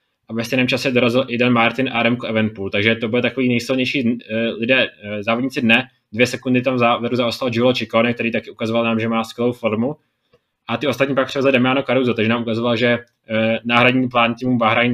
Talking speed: 195 wpm